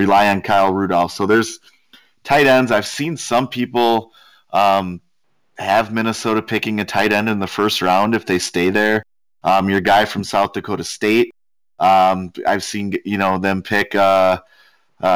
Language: English